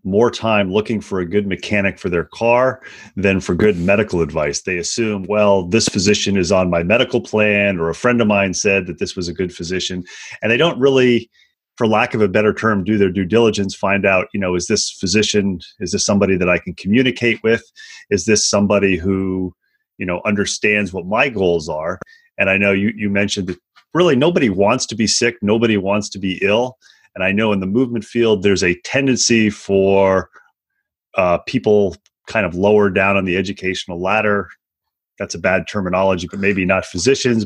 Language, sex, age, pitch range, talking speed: English, male, 30-49, 95-110 Hz, 200 wpm